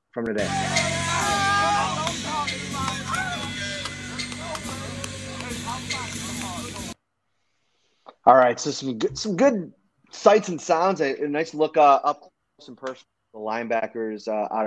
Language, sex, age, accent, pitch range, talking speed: English, male, 30-49, American, 110-145 Hz, 100 wpm